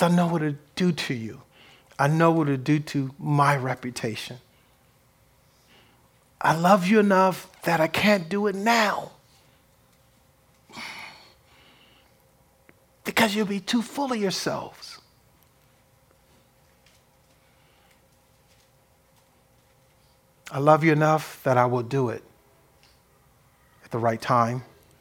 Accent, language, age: American, English, 50-69